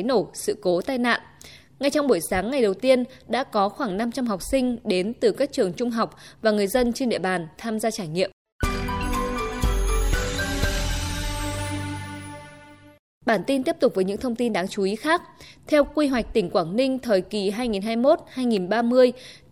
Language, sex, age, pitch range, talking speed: Vietnamese, female, 20-39, 190-260 Hz, 170 wpm